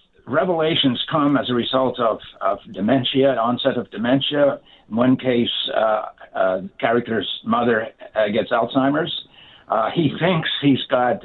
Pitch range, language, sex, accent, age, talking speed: 125-150 Hz, English, male, American, 60-79, 145 wpm